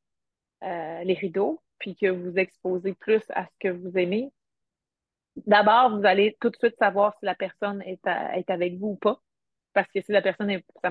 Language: French